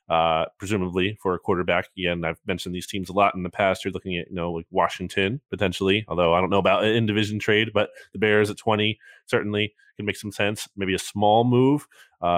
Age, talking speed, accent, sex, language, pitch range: 20-39, 225 wpm, American, male, English, 95-120 Hz